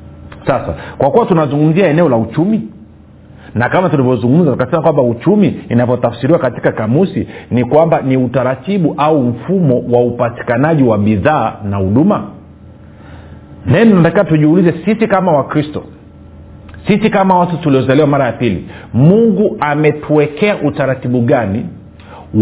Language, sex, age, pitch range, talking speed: Swahili, male, 50-69, 115-155 Hz, 125 wpm